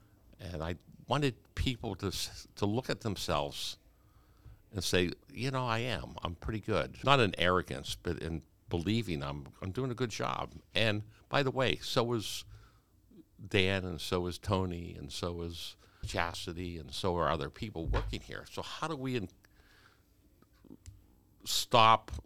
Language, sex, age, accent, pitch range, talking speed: English, male, 60-79, American, 85-105 Hz, 155 wpm